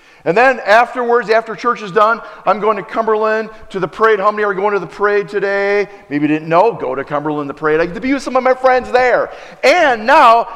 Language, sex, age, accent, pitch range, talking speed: English, male, 40-59, American, 155-235 Hz, 245 wpm